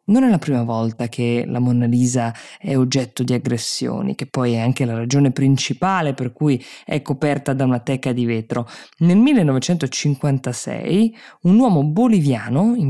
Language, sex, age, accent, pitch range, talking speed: Italian, female, 20-39, native, 130-175 Hz, 165 wpm